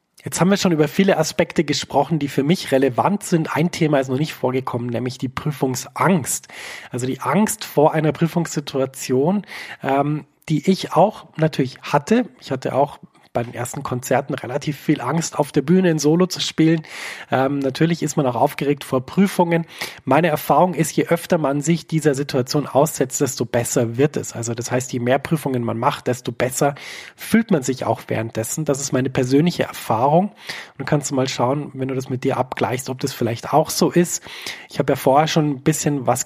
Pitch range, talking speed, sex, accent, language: 130-160 Hz, 195 wpm, male, German, German